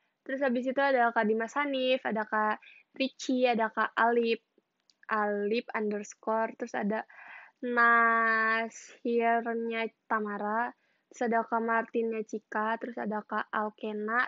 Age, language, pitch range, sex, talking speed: 10-29, Malay, 220-255 Hz, female, 120 wpm